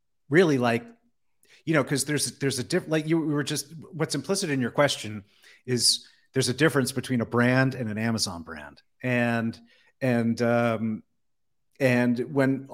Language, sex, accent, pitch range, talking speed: English, male, American, 115-130 Hz, 165 wpm